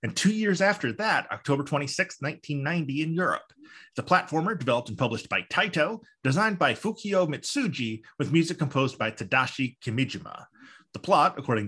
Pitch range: 115-160 Hz